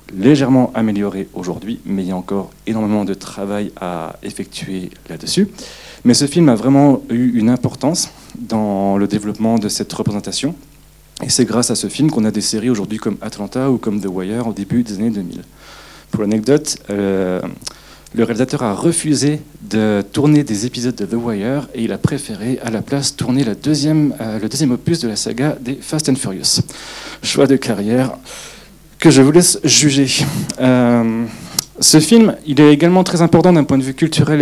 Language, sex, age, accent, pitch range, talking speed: French, male, 40-59, French, 110-150 Hz, 185 wpm